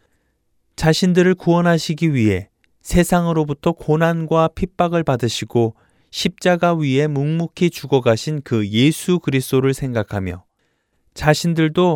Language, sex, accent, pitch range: Korean, male, native, 115-170 Hz